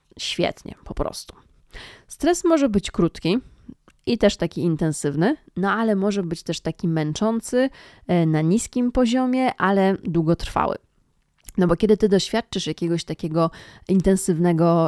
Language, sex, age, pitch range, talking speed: Polish, female, 20-39, 165-205 Hz, 125 wpm